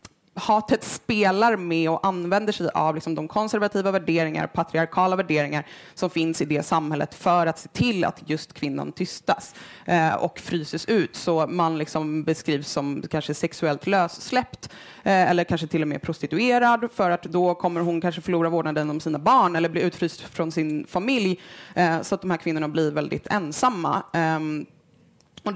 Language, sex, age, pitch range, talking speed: Swedish, female, 20-39, 155-185 Hz, 170 wpm